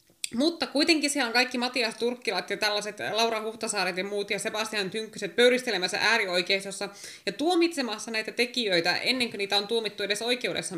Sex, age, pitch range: female, 20-39, 200-285 Hz